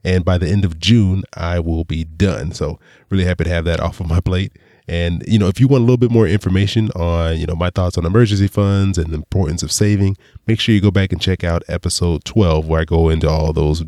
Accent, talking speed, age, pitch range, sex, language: American, 260 wpm, 20-39, 85-105 Hz, male, English